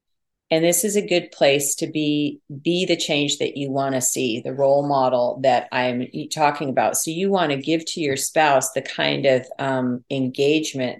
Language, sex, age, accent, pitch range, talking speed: English, female, 40-59, American, 135-155 Hz, 195 wpm